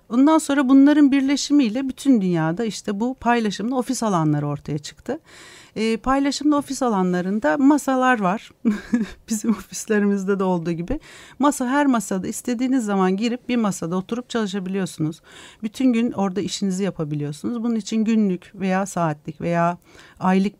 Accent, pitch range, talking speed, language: native, 175-235 Hz, 135 wpm, Turkish